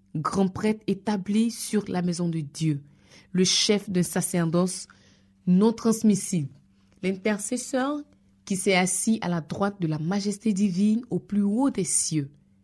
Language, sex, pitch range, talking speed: French, female, 155-215 Hz, 140 wpm